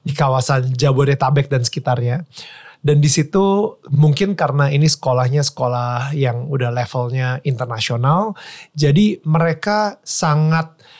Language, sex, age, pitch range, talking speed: Indonesian, male, 30-49, 130-160 Hz, 105 wpm